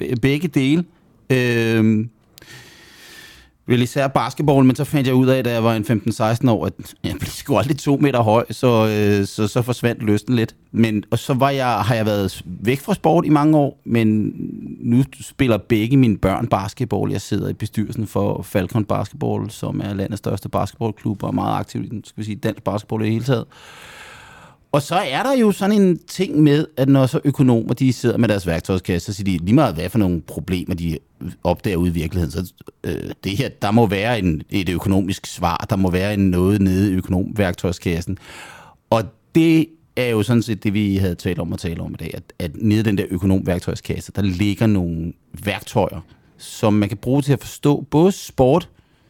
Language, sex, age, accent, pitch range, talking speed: Danish, male, 30-49, native, 100-130 Hz, 200 wpm